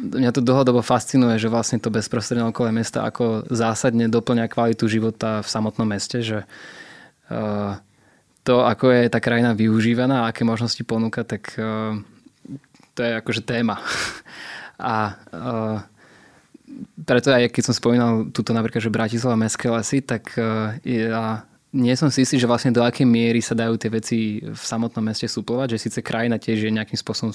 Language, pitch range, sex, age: Slovak, 110-120 Hz, male, 20-39